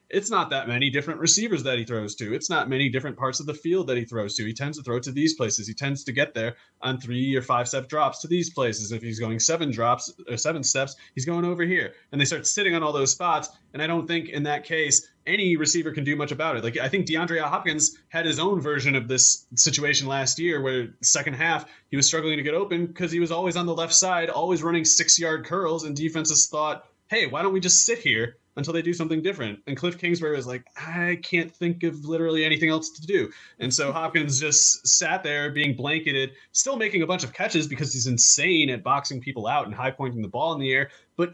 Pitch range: 130-165 Hz